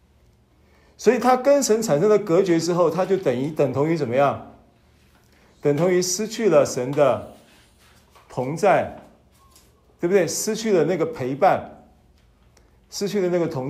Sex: male